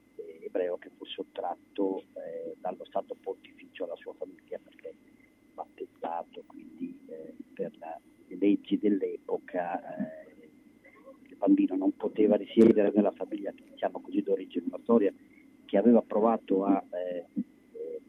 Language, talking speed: Italian, 115 wpm